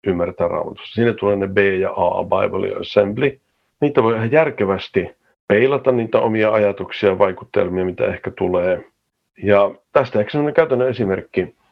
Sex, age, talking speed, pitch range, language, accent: male, 50-69, 155 wpm, 100-130 Hz, Finnish, native